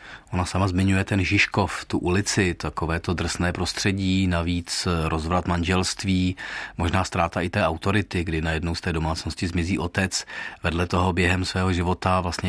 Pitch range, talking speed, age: 90-100 Hz, 155 wpm, 30-49